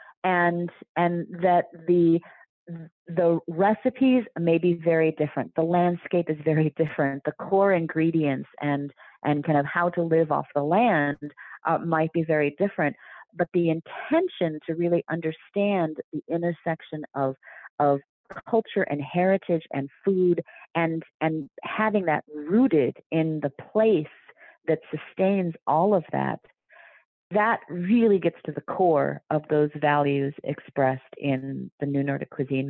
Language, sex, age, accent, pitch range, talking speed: English, female, 40-59, American, 150-180 Hz, 140 wpm